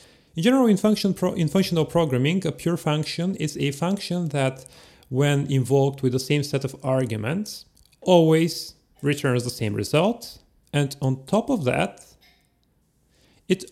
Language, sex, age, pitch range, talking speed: English, male, 30-49, 125-165 Hz, 150 wpm